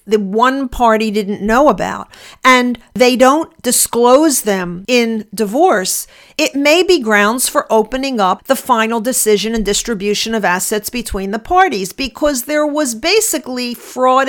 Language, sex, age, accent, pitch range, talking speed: English, female, 50-69, American, 215-265 Hz, 145 wpm